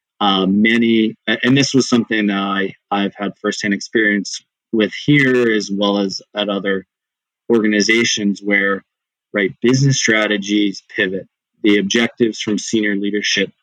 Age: 20-39